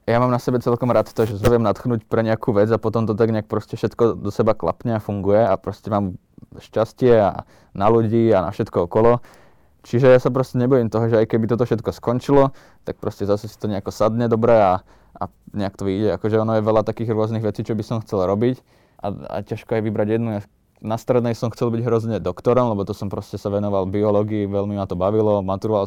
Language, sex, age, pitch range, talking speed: Slovak, male, 20-39, 100-120 Hz, 225 wpm